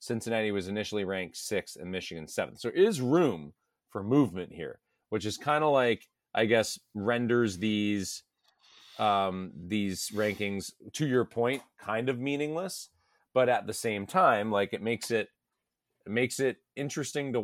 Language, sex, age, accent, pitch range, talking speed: English, male, 30-49, American, 100-125 Hz, 160 wpm